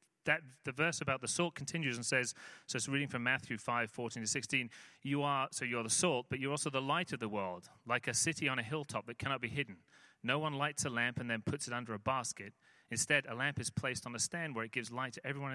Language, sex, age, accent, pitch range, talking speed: English, male, 30-49, British, 115-150 Hz, 265 wpm